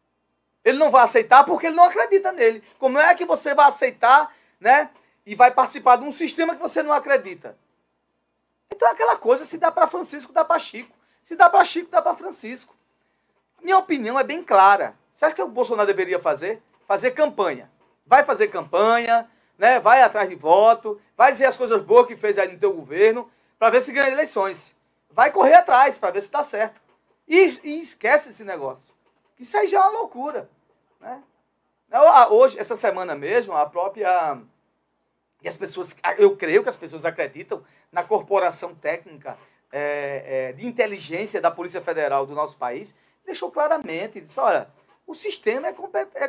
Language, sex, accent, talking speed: Portuguese, male, Brazilian, 175 wpm